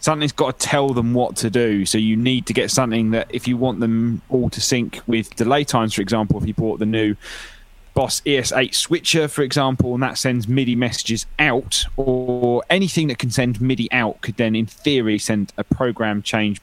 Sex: male